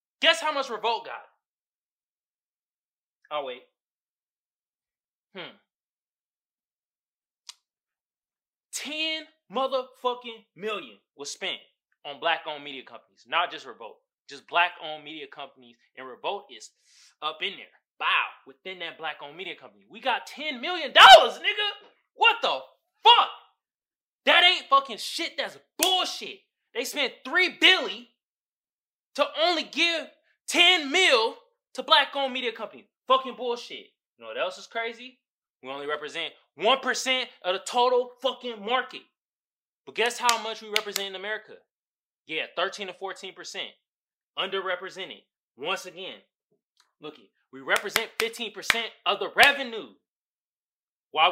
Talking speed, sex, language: 120 wpm, male, English